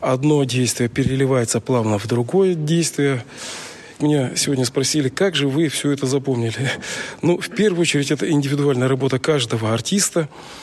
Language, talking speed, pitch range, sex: Russian, 140 wpm, 135-170 Hz, male